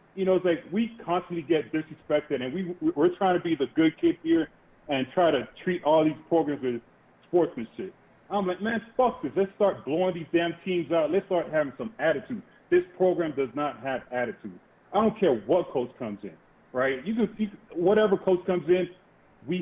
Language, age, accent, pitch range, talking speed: English, 30-49, American, 145-195 Hz, 200 wpm